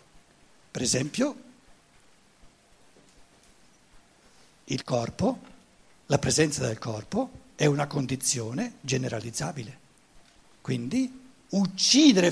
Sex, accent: male, native